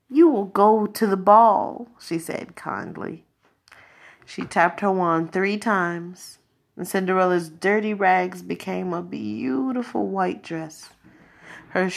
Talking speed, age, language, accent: 125 wpm, 30-49, English, American